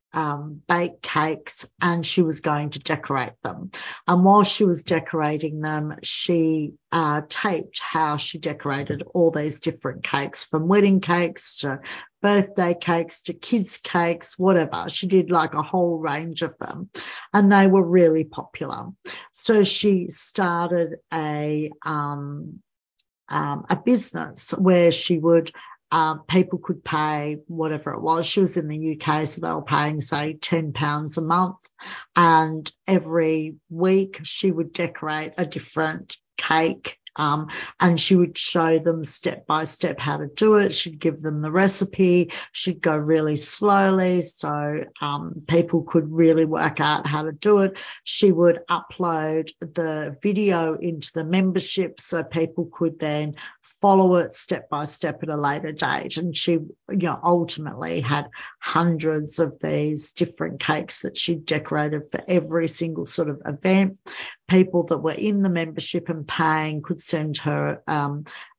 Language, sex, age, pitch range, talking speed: English, female, 50-69, 155-180 Hz, 155 wpm